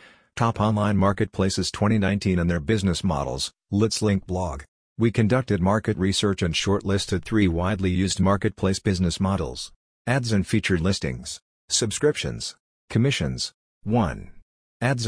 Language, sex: English, male